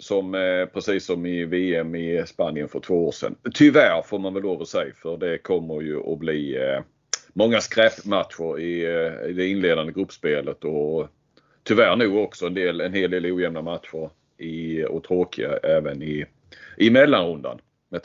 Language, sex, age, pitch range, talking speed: Swedish, male, 30-49, 85-130 Hz, 170 wpm